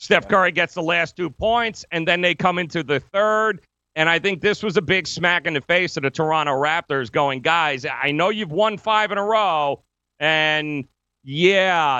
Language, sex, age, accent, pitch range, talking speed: English, male, 40-59, American, 150-205 Hz, 205 wpm